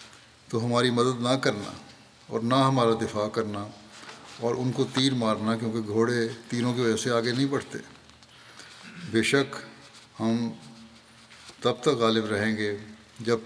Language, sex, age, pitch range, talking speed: Urdu, male, 60-79, 110-120 Hz, 145 wpm